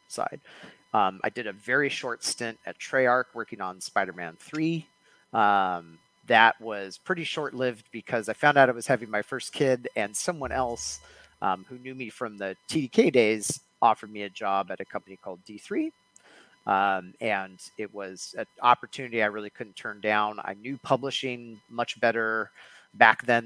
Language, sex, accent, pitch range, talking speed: English, male, American, 100-125 Hz, 170 wpm